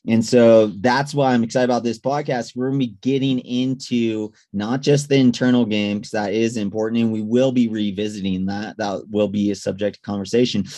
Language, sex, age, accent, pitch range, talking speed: English, male, 30-49, American, 105-125 Hz, 205 wpm